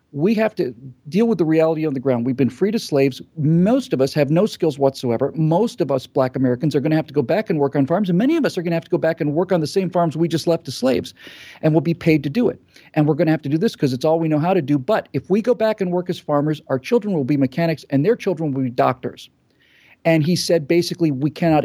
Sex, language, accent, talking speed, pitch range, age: male, English, American, 300 wpm, 145-195 Hz, 40-59